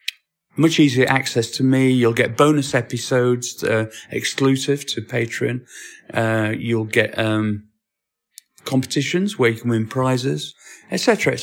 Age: 40-59